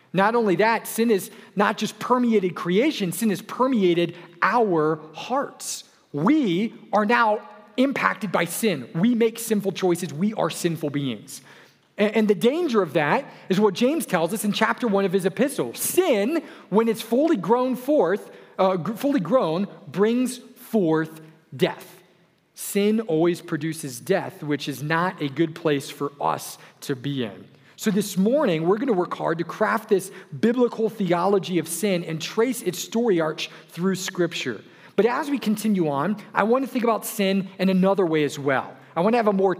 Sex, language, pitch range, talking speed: male, English, 165-220 Hz, 175 wpm